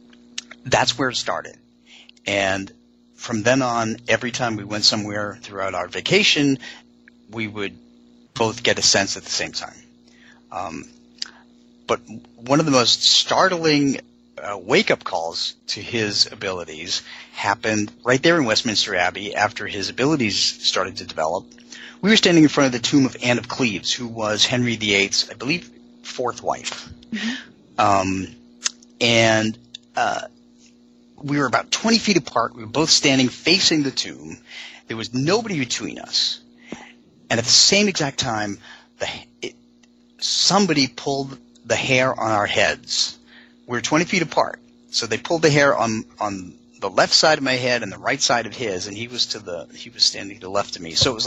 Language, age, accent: English, 40-59, American